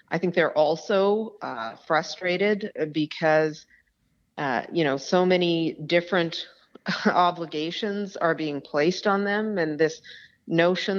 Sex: female